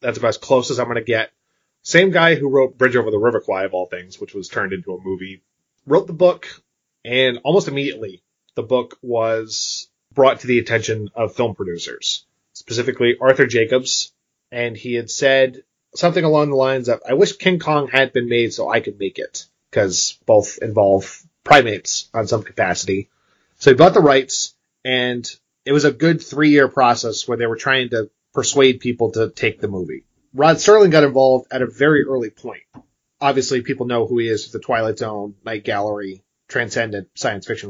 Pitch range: 120-145 Hz